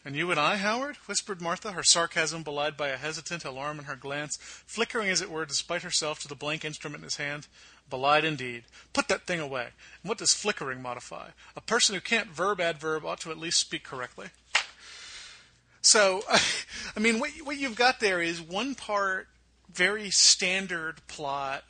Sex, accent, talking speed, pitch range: male, American, 185 wpm, 135-170 Hz